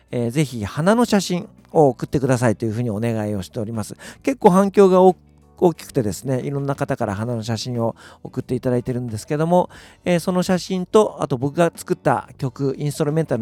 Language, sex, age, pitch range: Japanese, male, 50-69, 110-170 Hz